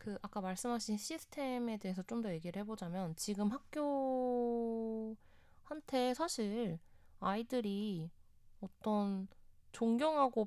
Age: 20-39